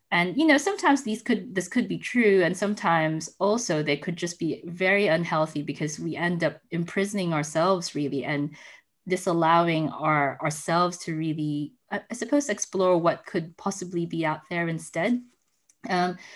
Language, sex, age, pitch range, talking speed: English, female, 20-39, 150-180 Hz, 160 wpm